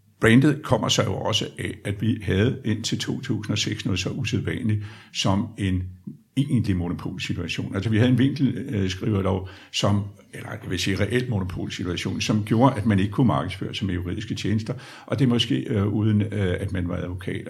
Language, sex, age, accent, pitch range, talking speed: Danish, male, 60-79, native, 100-125 Hz, 175 wpm